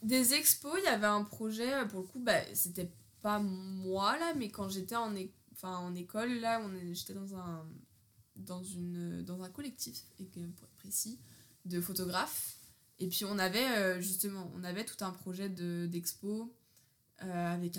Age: 20-39